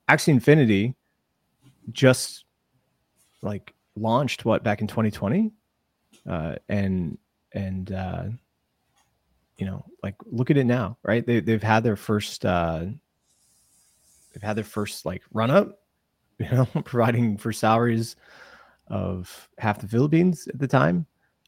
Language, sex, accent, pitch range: English, male, American, 100-125 Hz